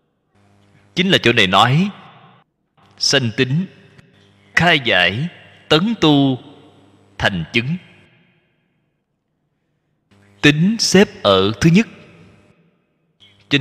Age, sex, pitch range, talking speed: 20-39, male, 100-155 Hz, 85 wpm